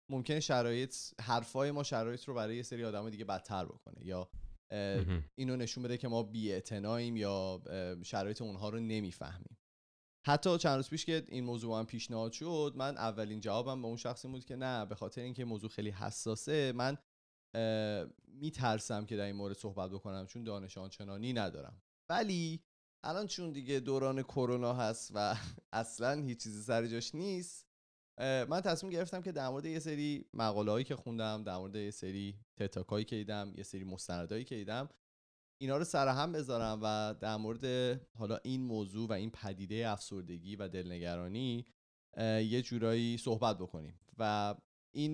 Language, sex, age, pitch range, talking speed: Persian, male, 30-49, 100-130 Hz, 160 wpm